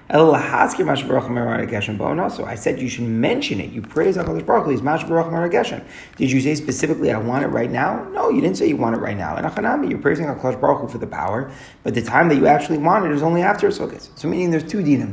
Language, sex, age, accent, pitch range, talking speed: English, male, 30-49, American, 115-150 Hz, 230 wpm